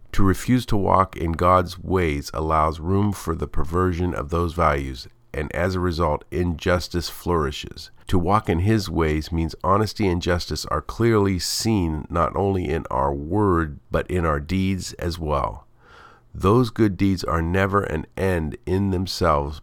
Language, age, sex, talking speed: English, 50-69, male, 160 wpm